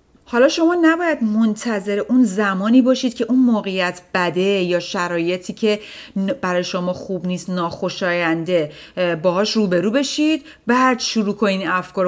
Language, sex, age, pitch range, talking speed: Persian, female, 30-49, 175-225 Hz, 135 wpm